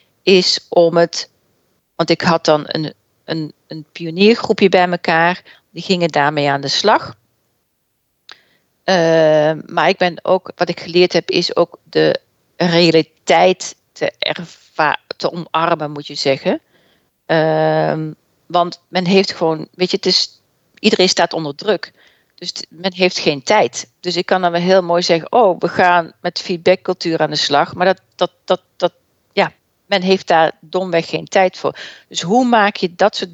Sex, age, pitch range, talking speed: female, 40-59, 160-190 Hz, 155 wpm